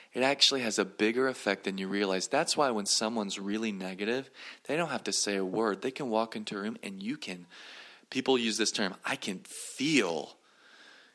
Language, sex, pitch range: English, male, 100-140 Hz